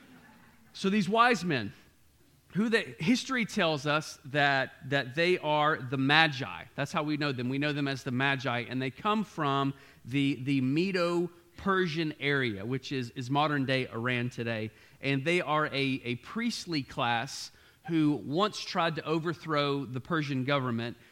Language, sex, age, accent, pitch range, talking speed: English, male, 40-59, American, 135-160 Hz, 160 wpm